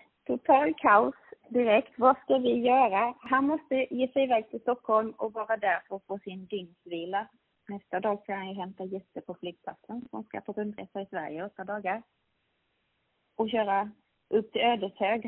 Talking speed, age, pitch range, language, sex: 175 wpm, 30-49, 190-240 Hz, Swedish, female